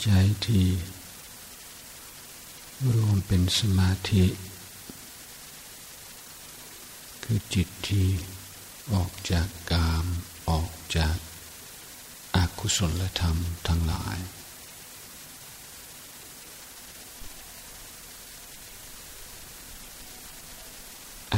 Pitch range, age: 80-95 Hz, 60-79